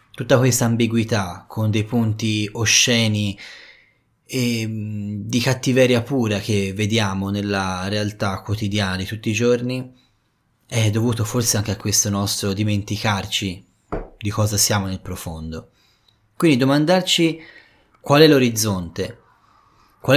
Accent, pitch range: native, 105-125 Hz